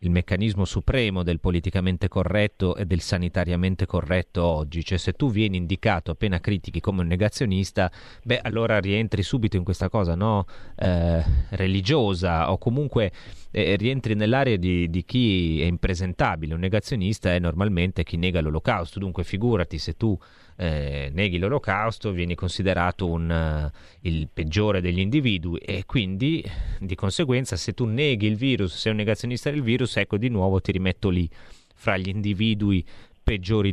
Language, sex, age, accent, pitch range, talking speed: Italian, male, 30-49, native, 90-110 Hz, 155 wpm